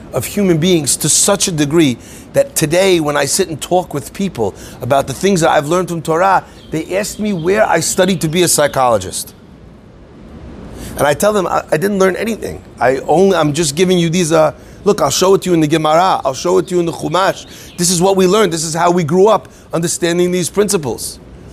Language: English